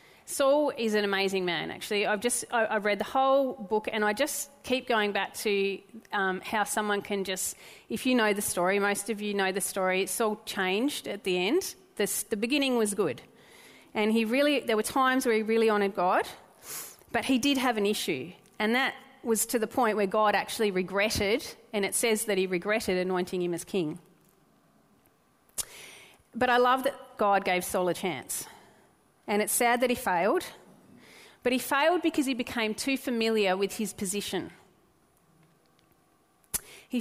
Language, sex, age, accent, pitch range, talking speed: German, female, 30-49, Australian, 195-250 Hz, 180 wpm